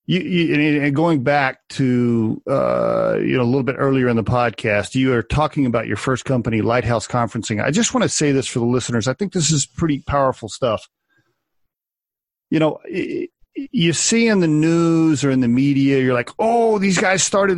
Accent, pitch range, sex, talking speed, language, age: American, 130-180 Hz, male, 200 wpm, English, 40-59